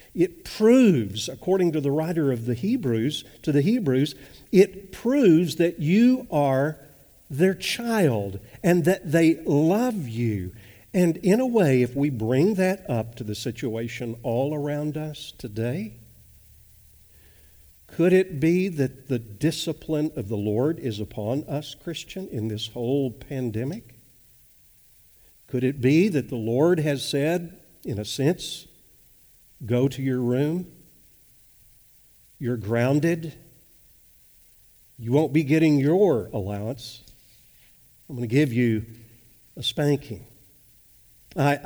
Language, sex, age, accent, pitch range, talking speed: English, male, 50-69, American, 115-160 Hz, 125 wpm